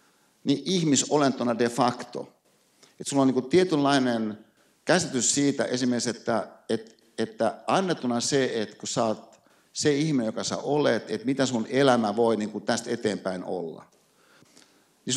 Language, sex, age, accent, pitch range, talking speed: Finnish, male, 60-79, native, 120-150 Hz, 140 wpm